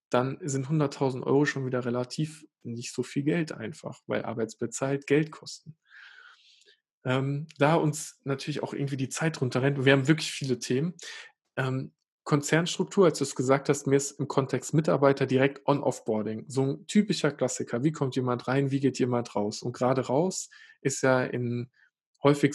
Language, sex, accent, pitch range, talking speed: German, male, German, 125-150 Hz, 175 wpm